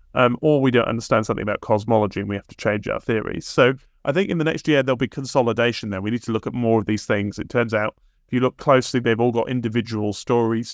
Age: 30-49